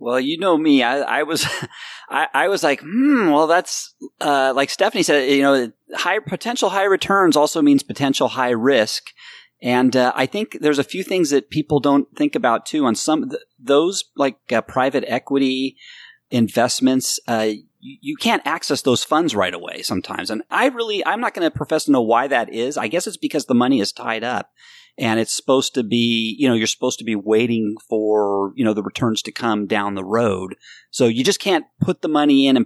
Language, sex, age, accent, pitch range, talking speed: English, male, 30-49, American, 120-175 Hz, 210 wpm